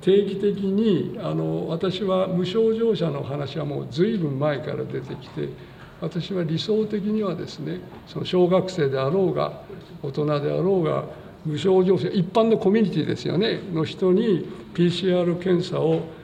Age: 60-79